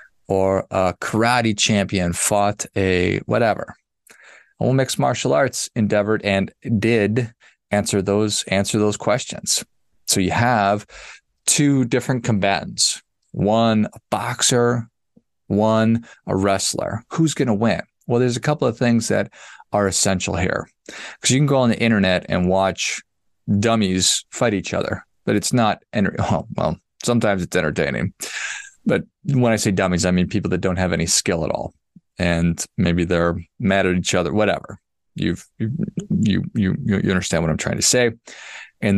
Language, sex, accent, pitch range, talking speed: English, male, American, 95-115 Hz, 155 wpm